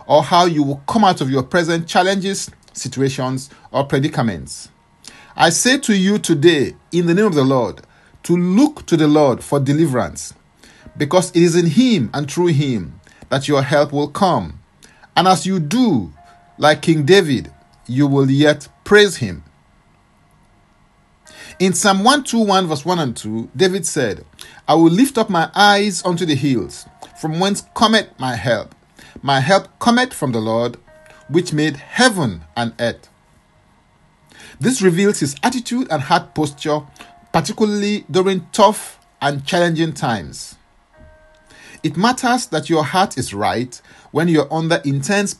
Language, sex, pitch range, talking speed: English, male, 135-190 Hz, 155 wpm